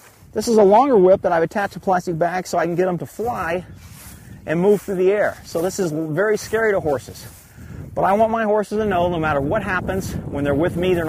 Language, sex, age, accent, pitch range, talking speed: English, male, 40-59, American, 180-230 Hz, 250 wpm